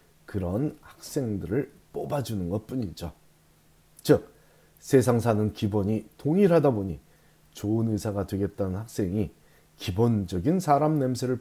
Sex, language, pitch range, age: male, Korean, 95-140 Hz, 40-59